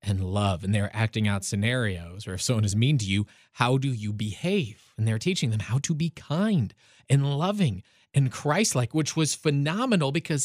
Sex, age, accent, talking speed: male, 30-49, American, 200 wpm